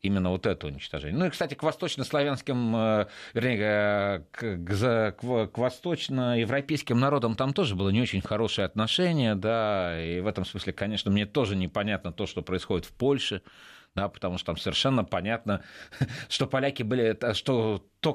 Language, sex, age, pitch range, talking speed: Russian, male, 30-49, 95-125 Hz, 160 wpm